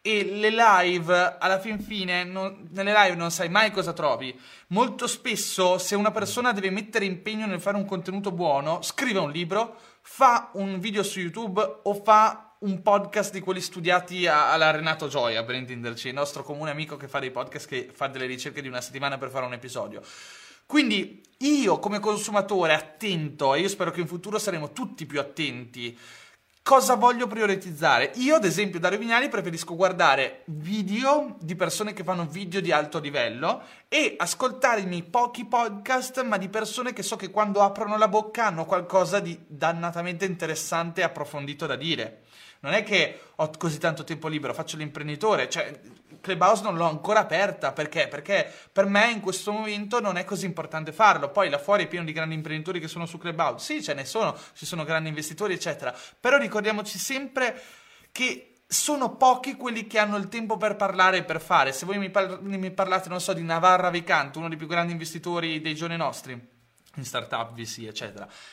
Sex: male